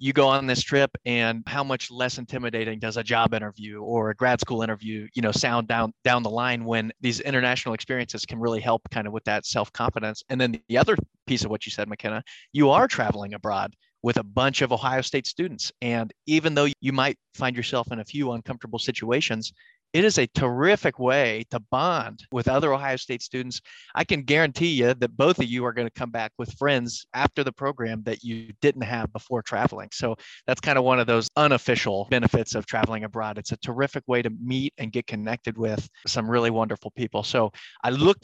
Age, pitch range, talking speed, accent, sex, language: 30-49, 115-135 Hz, 215 wpm, American, male, English